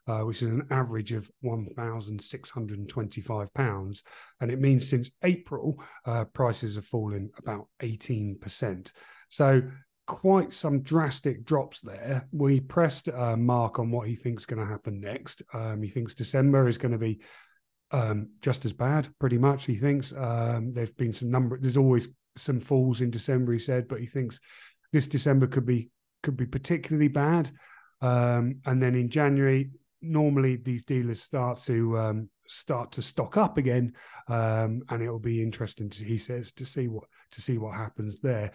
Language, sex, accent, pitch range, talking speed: English, male, British, 115-140 Hz, 170 wpm